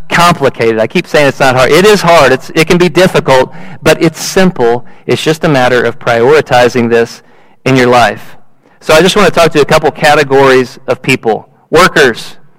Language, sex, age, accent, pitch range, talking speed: English, male, 40-59, American, 130-165 Hz, 195 wpm